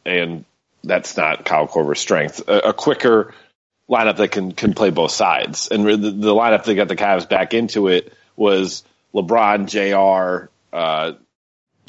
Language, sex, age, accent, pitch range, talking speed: English, male, 30-49, American, 95-115 Hz, 155 wpm